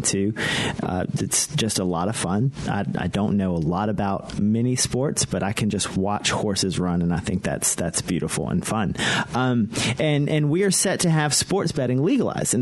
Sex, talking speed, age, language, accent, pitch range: male, 210 wpm, 30-49, English, American, 105-135 Hz